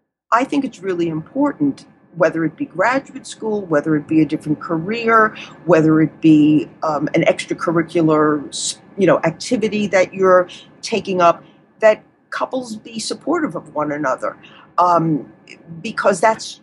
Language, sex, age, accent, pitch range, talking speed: English, female, 50-69, American, 165-220 Hz, 140 wpm